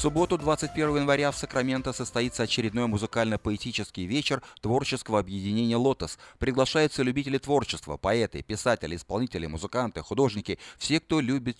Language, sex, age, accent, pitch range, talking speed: Russian, male, 30-49, native, 100-135 Hz, 125 wpm